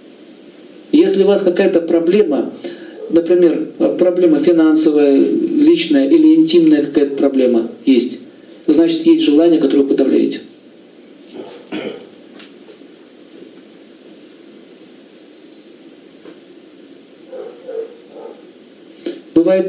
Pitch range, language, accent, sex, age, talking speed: 215-335 Hz, Russian, native, male, 50-69, 65 wpm